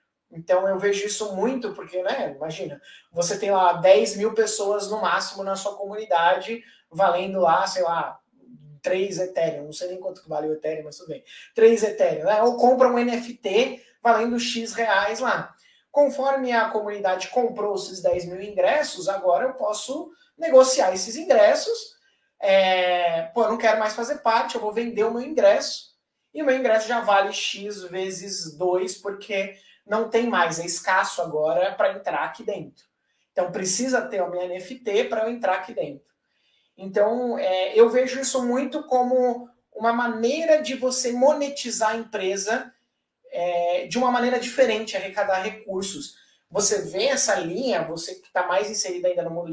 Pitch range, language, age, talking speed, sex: 180-240 Hz, Portuguese, 20-39, 165 wpm, male